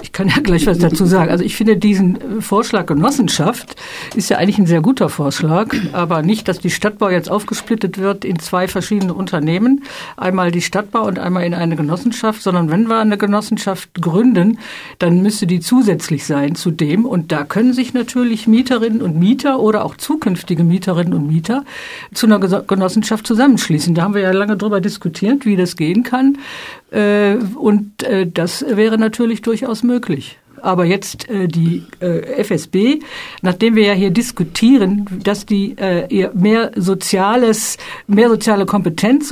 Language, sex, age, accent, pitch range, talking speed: German, female, 50-69, German, 175-220 Hz, 160 wpm